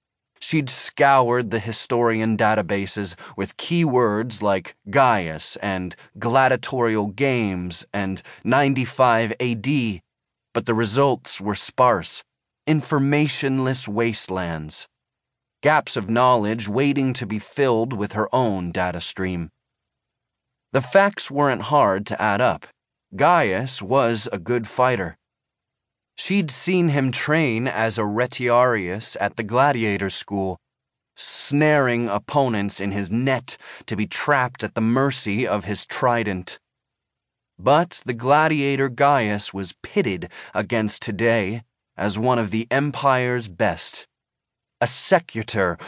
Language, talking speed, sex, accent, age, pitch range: English, 115 wpm, male, American, 30-49, 105-135 Hz